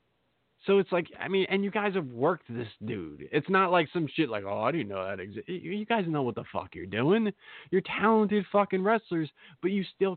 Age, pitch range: 20-39, 130-185 Hz